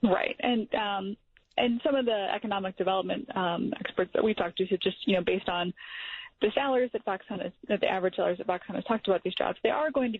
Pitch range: 185-235 Hz